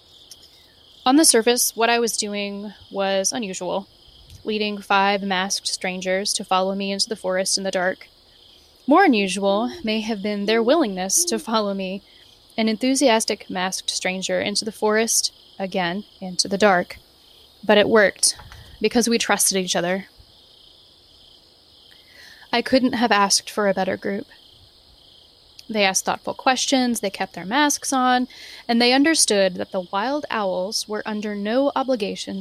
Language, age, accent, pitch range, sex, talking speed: English, 10-29, American, 190-235 Hz, female, 145 wpm